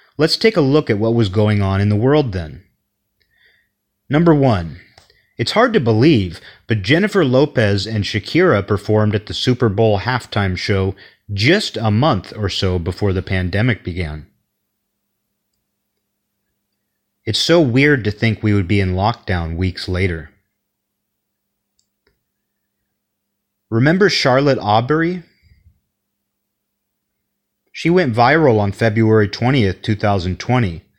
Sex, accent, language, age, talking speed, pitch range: male, American, English, 30-49, 120 wpm, 100-125 Hz